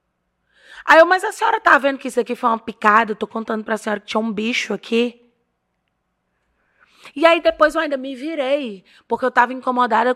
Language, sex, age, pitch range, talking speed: Portuguese, female, 20-39, 220-300 Hz, 200 wpm